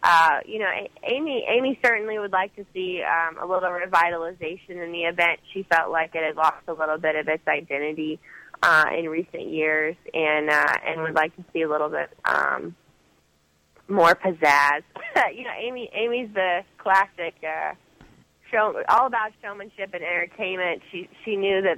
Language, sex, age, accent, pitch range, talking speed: English, female, 20-39, American, 165-215 Hz, 175 wpm